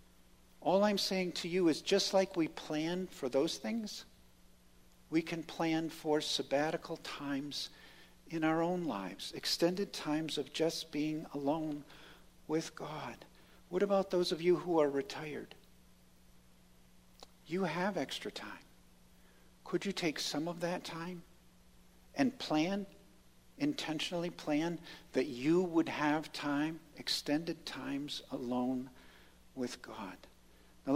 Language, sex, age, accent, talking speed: English, male, 50-69, American, 125 wpm